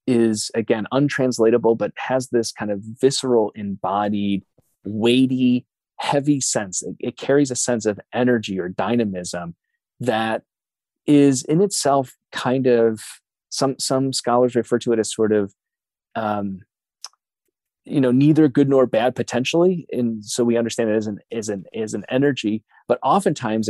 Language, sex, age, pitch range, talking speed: English, male, 30-49, 105-130 Hz, 150 wpm